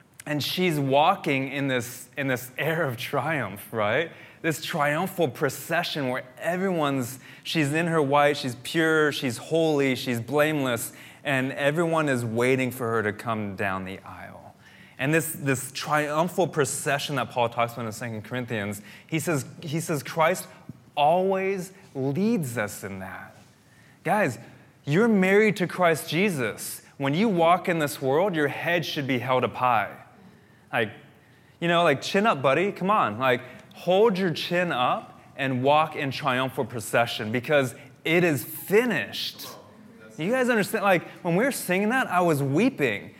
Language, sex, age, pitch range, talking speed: English, male, 20-39, 125-170 Hz, 155 wpm